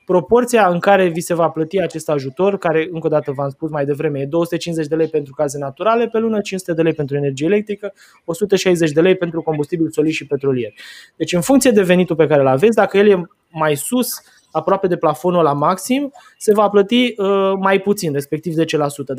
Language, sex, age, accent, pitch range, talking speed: Romanian, male, 20-39, native, 145-195 Hz, 205 wpm